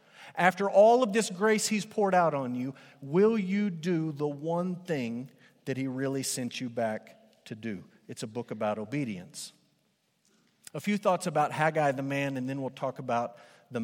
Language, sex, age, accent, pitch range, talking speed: English, male, 40-59, American, 135-175 Hz, 180 wpm